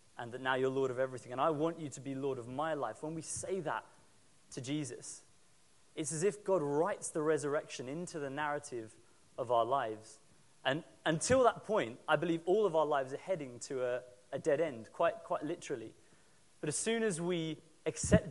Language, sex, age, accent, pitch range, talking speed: English, male, 30-49, British, 130-165 Hz, 205 wpm